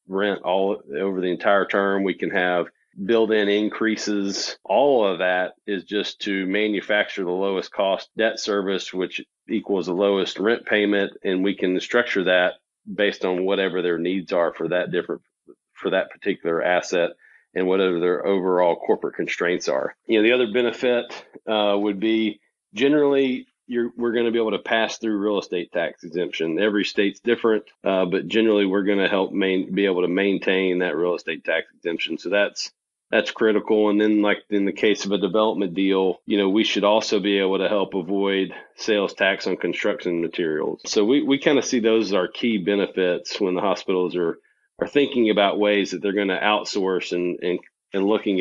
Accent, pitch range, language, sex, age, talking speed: American, 95-105 Hz, English, male, 40-59, 190 wpm